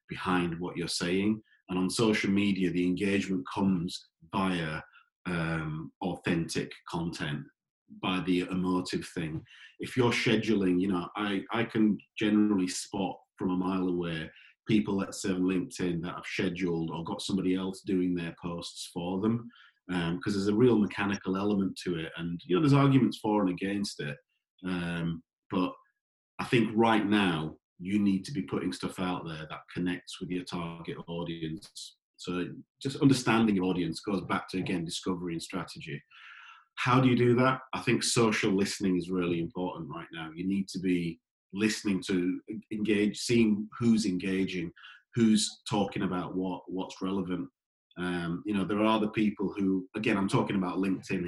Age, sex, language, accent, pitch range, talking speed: 40-59, male, English, British, 90-105 Hz, 165 wpm